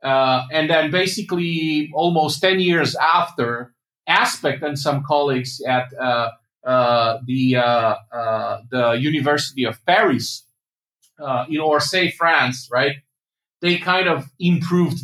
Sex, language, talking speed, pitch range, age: male, English, 130 wpm, 130-175 Hz, 40-59